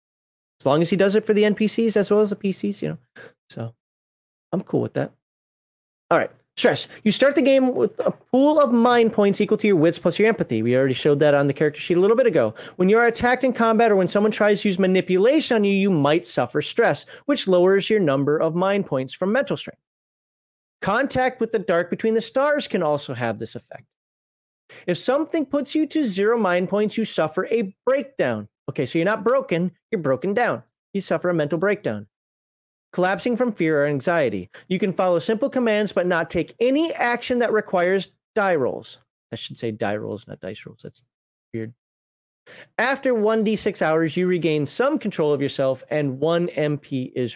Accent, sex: American, male